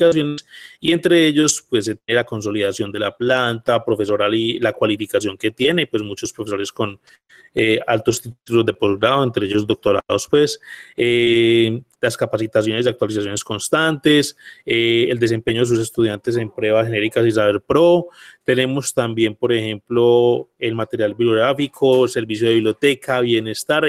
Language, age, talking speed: Spanish, 30-49, 145 wpm